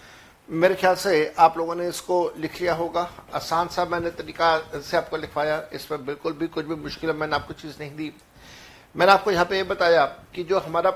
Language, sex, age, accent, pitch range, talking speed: Hindi, male, 60-79, native, 170-215 Hz, 215 wpm